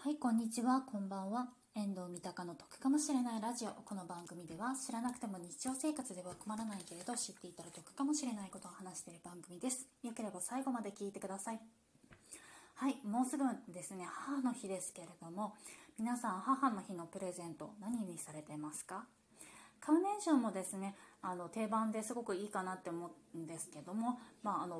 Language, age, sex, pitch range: Japanese, 20-39, female, 175-245 Hz